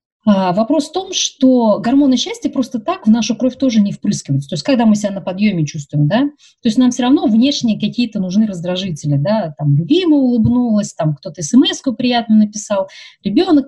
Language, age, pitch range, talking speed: Russian, 30-49, 195-265 Hz, 185 wpm